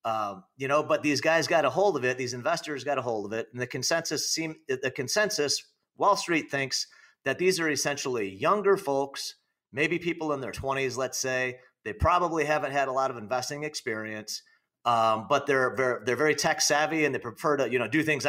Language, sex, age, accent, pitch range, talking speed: English, male, 40-59, American, 125-155 Hz, 215 wpm